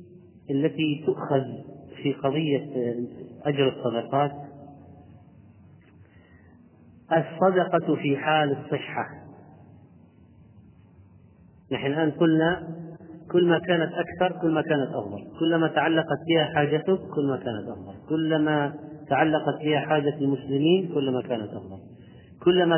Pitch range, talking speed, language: 120-165 Hz, 100 wpm, Arabic